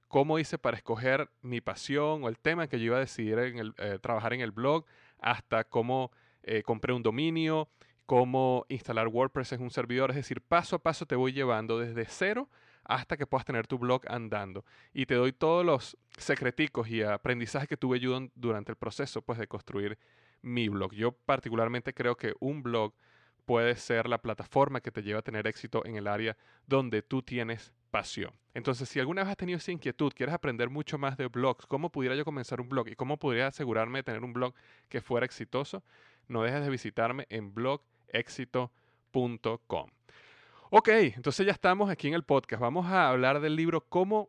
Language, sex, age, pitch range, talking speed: Spanish, male, 30-49, 115-140 Hz, 190 wpm